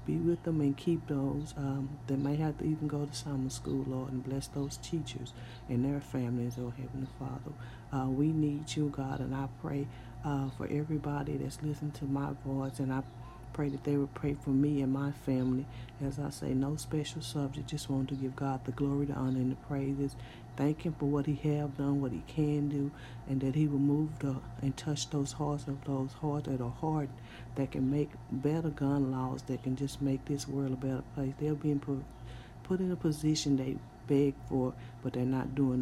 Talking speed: 220 wpm